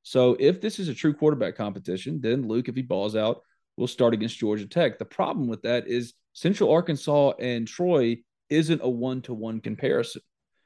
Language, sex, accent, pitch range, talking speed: English, male, American, 120-145 Hz, 180 wpm